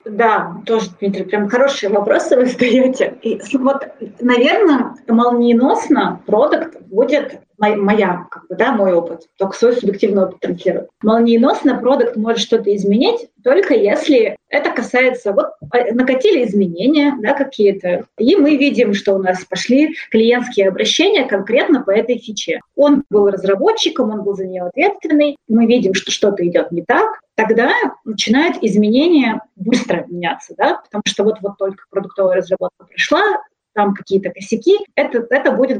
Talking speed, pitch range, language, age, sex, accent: 145 wpm, 205-280 Hz, Russian, 20-39, female, native